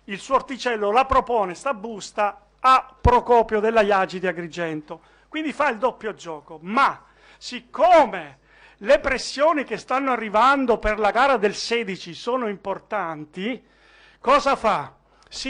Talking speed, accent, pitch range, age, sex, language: 135 wpm, native, 195-255 Hz, 50-69, male, Italian